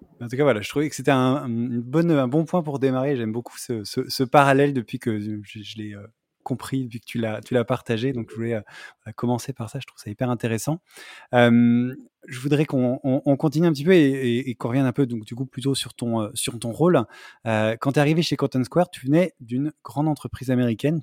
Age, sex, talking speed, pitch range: 20-39, male, 245 wpm, 115-135 Hz